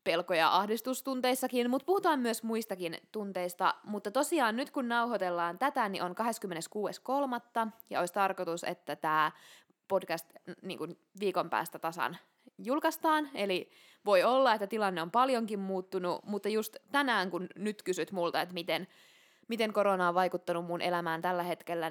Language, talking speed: Finnish, 140 wpm